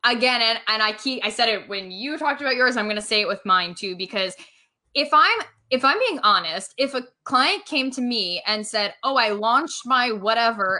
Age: 10-29